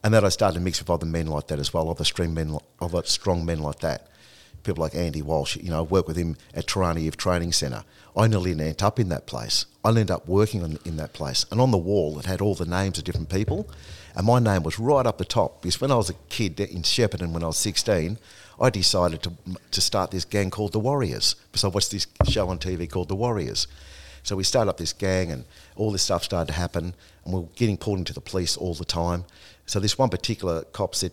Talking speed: 255 wpm